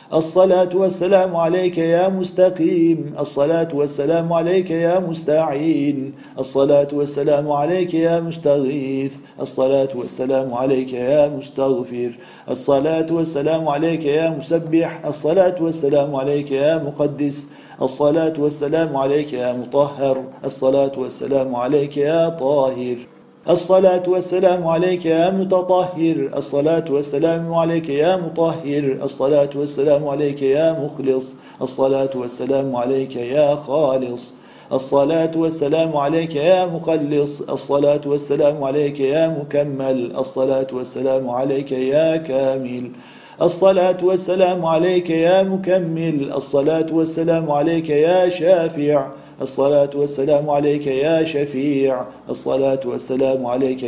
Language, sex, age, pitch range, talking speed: Turkish, male, 40-59, 135-165 Hz, 105 wpm